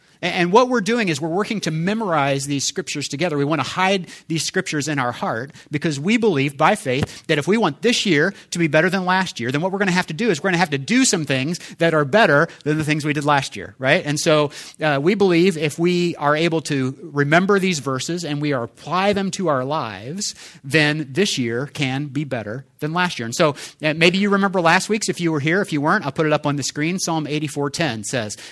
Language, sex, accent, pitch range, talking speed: English, male, American, 135-180 Hz, 255 wpm